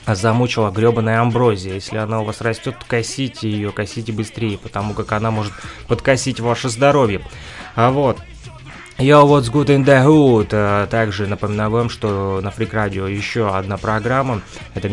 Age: 20-39